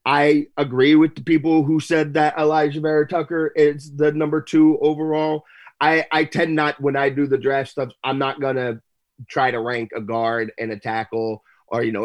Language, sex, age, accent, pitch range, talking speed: English, male, 30-49, American, 115-150 Hz, 200 wpm